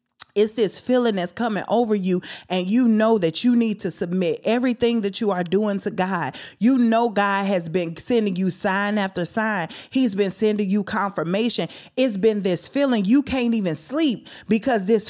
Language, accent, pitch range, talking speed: English, American, 170-230 Hz, 185 wpm